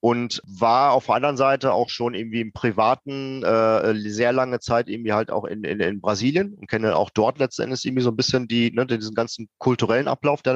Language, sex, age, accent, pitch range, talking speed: German, male, 40-59, German, 110-130 Hz, 215 wpm